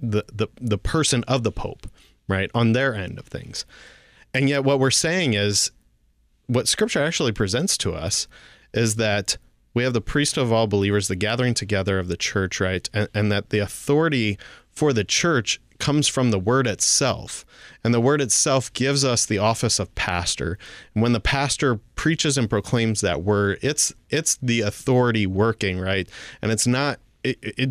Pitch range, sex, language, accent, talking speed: 100-125 Hz, male, English, American, 180 wpm